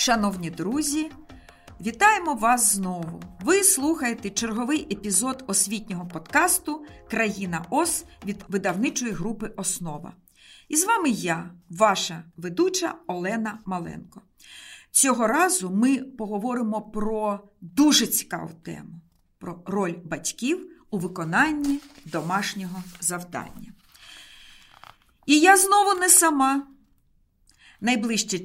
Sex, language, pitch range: female, Ukrainian, 185-270 Hz